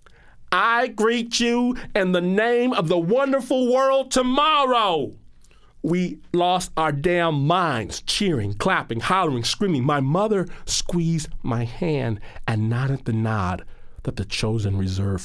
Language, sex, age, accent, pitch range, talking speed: English, male, 40-59, American, 105-170 Hz, 130 wpm